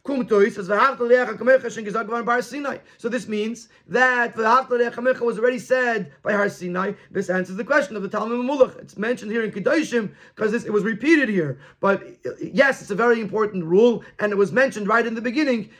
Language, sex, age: English, male, 30-49